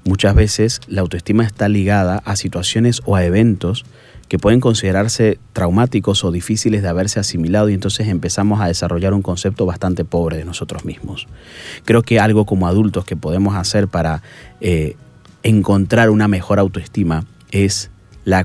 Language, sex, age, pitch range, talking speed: Spanish, male, 30-49, 90-110 Hz, 155 wpm